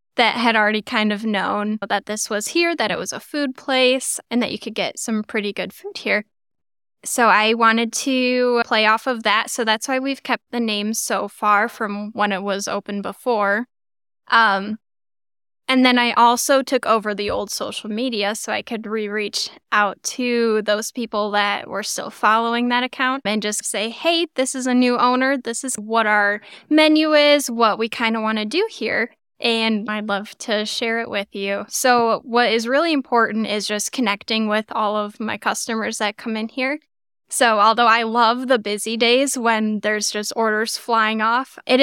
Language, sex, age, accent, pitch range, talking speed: English, female, 10-29, American, 210-245 Hz, 195 wpm